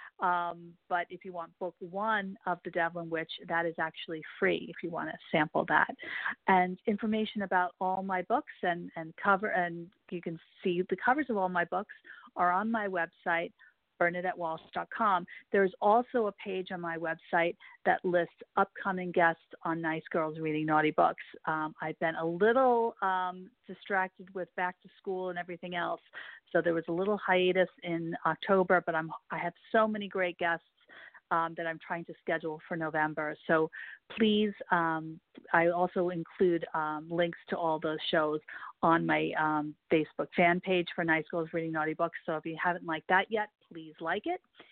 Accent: American